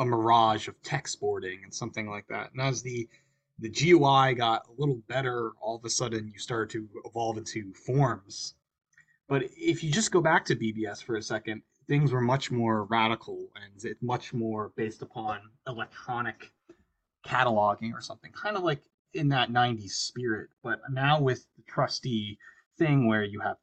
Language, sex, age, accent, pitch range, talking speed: English, male, 20-39, American, 110-135 Hz, 180 wpm